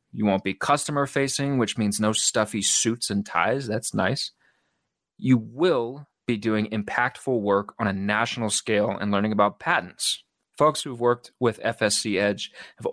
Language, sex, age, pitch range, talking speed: English, male, 30-49, 105-140 Hz, 160 wpm